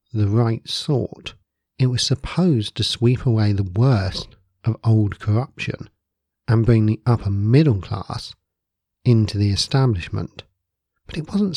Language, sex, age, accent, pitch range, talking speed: English, male, 50-69, British, 100-125 Hz, 135 wpm